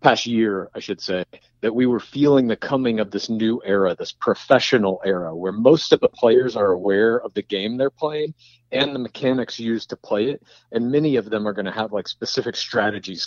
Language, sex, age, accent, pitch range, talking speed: English, male, 40-59, American, 110-155 Hz, 215 wpm